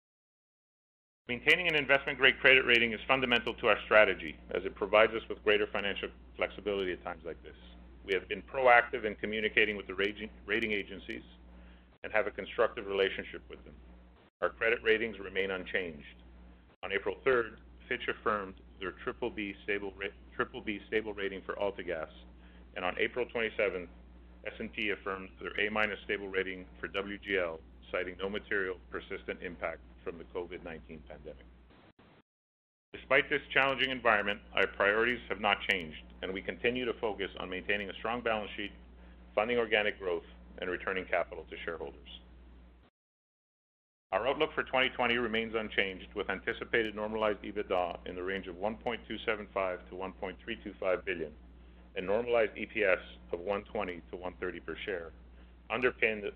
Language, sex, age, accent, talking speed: English, male, 40-59, American, 145 wpm